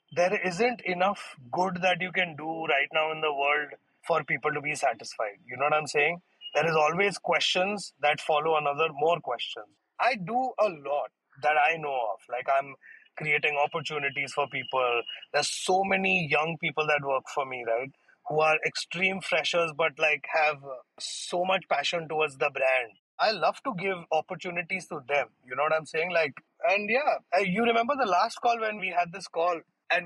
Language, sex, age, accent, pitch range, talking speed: English, male, 30-49, Indian, 150-195 Hz, 190 wpm